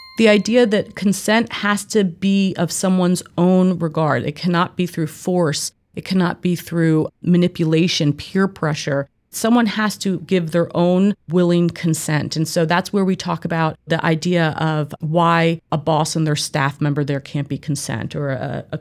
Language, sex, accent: English, female, American